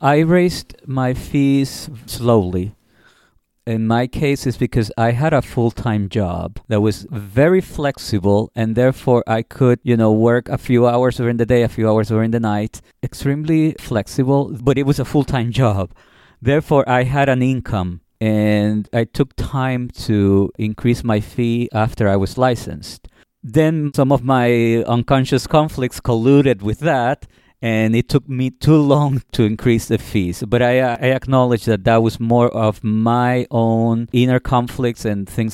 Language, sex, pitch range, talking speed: English, male, 110-130 Hz, 165 wpm